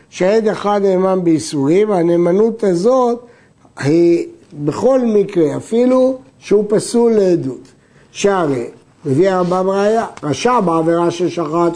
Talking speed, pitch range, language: 95 wpm, 160-225 Hz, Hebrew